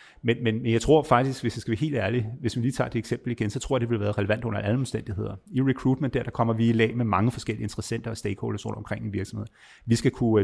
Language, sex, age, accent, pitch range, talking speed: Danish, male, 30-49, native, 100-115 Hz, 285 wpm